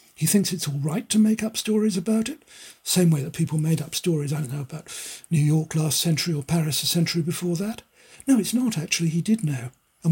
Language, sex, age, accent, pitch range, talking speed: English, male, 60-79, British, 150-190 Hz, 235 wpm